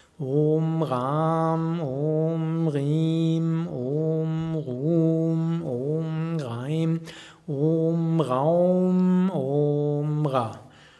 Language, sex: German, male